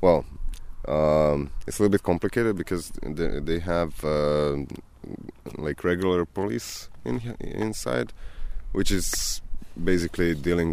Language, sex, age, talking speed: English, male, 20-39, 115 wpm